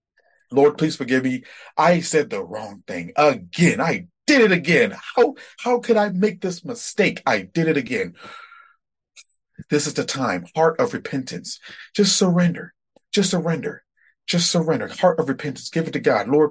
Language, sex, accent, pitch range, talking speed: English, male, American, 160-210 Hz, 165 wpm